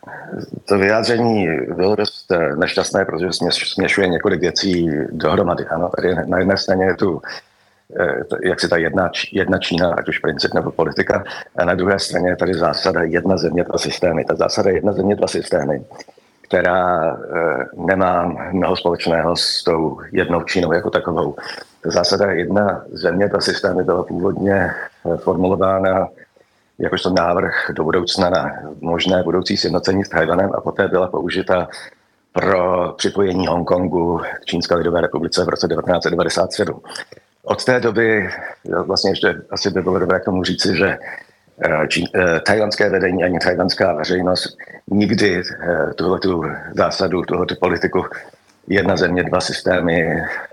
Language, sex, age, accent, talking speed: Czech, male, 50-69, native, 140 wpm